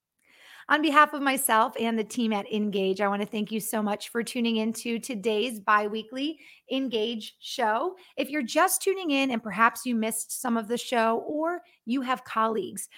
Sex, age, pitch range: female, 30-49, 205-260 Hz